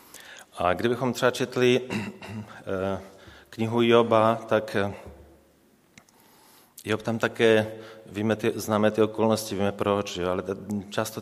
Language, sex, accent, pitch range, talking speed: Czech, male, native, 95-115 Hz, 105 wpm